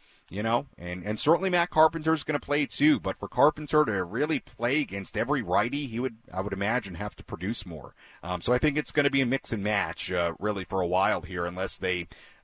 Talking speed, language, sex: 245 wpm, English, male